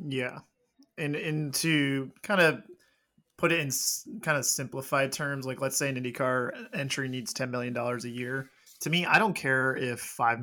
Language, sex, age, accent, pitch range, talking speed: English, male, 20-39, American, 120-140 Hz, 190 wpm